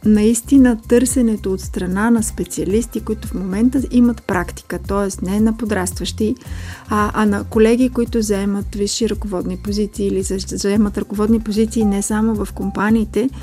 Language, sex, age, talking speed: Bulgarian, female, 30-49, 140 wpm